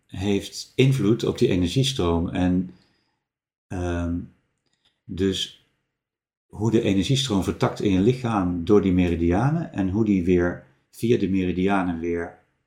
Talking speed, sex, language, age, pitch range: 125 wpm, male, Dutch, 50-69, 85-105 Hz